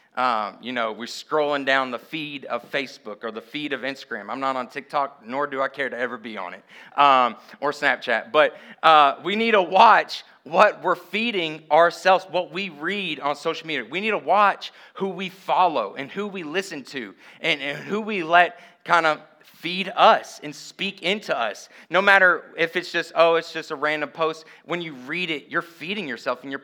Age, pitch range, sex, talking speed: 30-49, 150-180 Hz, male, 205 wpm